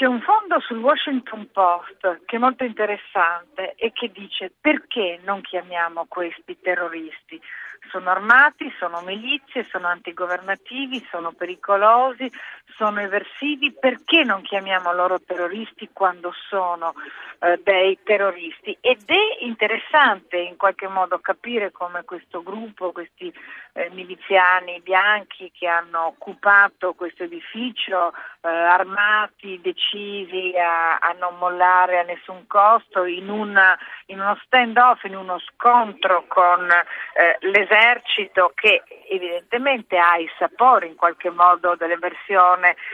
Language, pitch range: Italian, 180-235 Hz